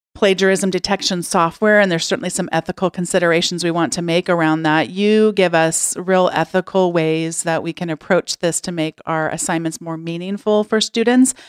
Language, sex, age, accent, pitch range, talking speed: English, female, 40-59, American, 165-205 Hz, 180 wpm